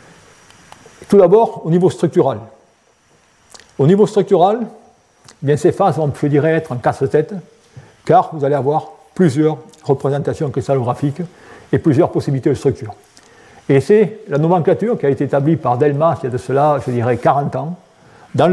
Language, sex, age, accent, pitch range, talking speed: French, male, 50-69, French, 145-185 Hz, 160 wpm